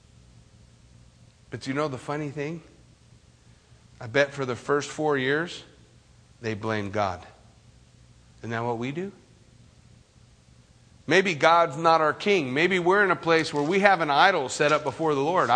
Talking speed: 160 wpm